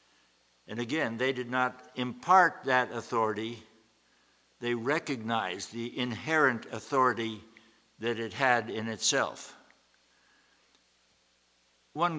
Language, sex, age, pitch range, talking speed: English, male, 60-79, 110-135 Hz, 95 wpm